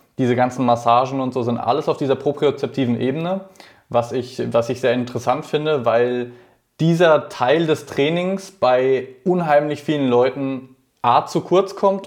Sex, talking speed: male, 150 wpm